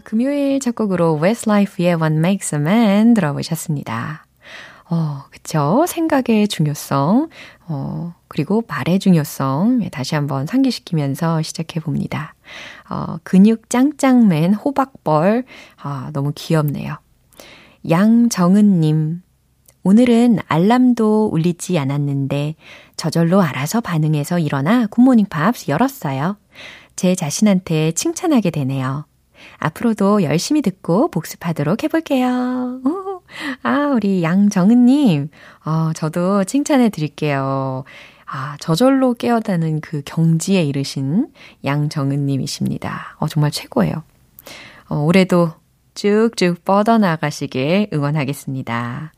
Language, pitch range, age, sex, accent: Korean, 150-230 Hz, 20-39, female, native